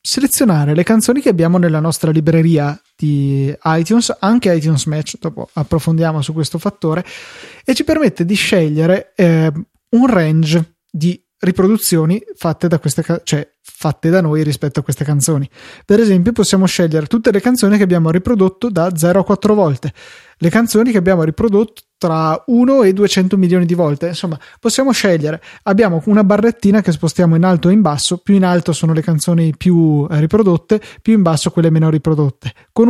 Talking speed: 175 wpm